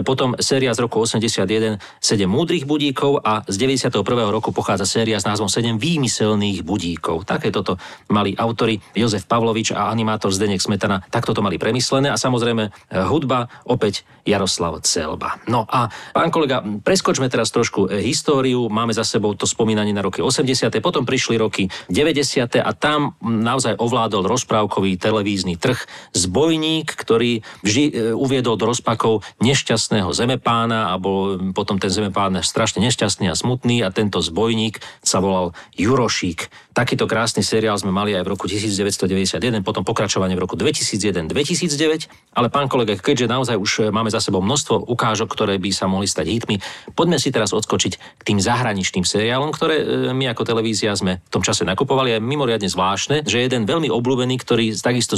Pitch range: 105-125 Hz